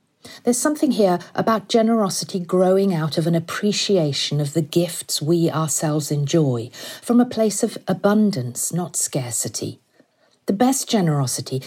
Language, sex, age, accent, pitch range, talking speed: English, female, 50-69, British, 150-215 Hz, 135 wpm